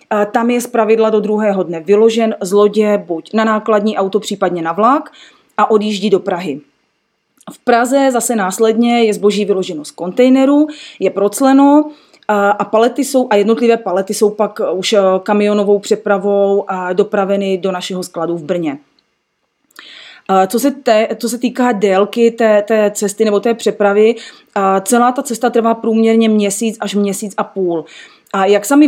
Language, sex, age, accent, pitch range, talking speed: Czech, female, 30-49, native, 200-235 Hz, 165 wpm